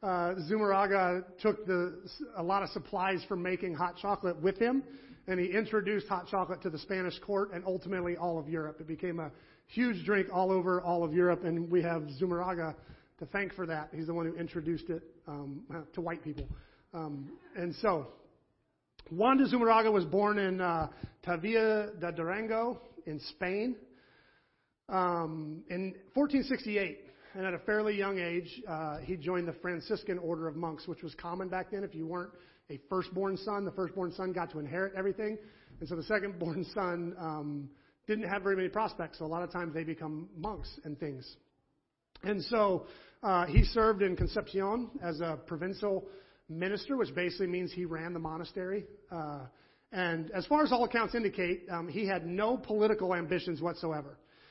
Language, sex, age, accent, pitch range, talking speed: English, male, 40-59, American, 170-200 Hz, 175 wpm